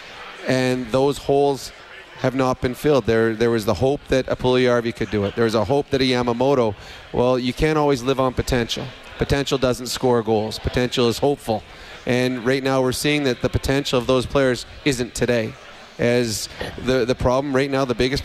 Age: 30-49